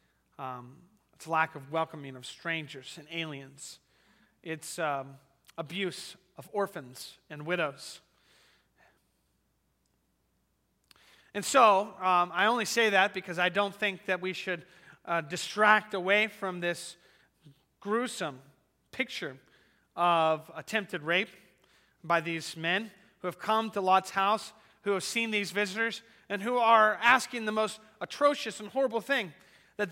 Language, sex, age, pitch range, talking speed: English, male, 30-49, 155-195 Hz, 130 wpm